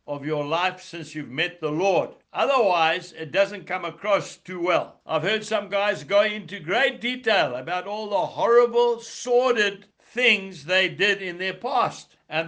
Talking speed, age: 170 wpm, 60-79